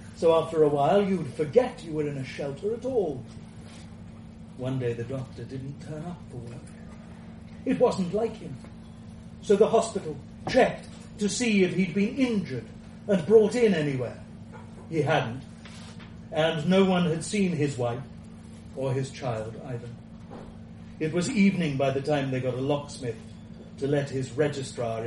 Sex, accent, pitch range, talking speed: male, British, 115-175 Hz, 160 wpm